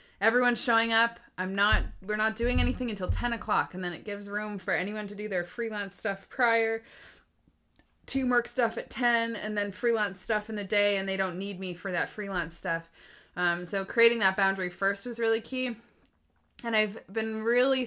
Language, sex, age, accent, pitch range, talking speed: English, female, 20-39, American, 175-230 Hz, 195 wpm